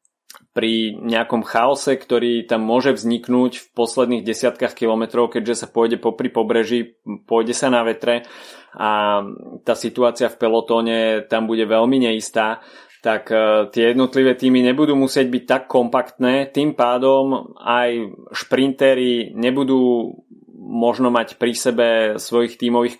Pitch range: 110-125 Hz